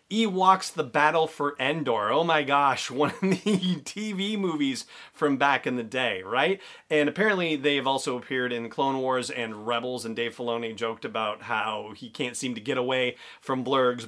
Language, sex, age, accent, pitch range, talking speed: English, male, 30-49, American, 120-150 Hz, 185 wpm